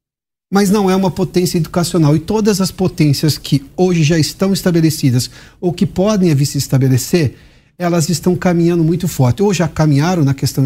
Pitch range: 140-180 Hz